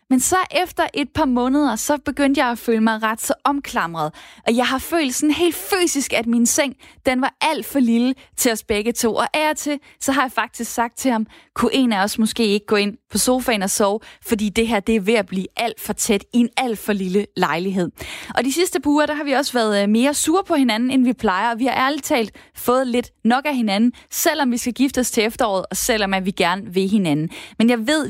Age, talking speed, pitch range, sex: 20-39, 250 wpm, 210-265 Hz, female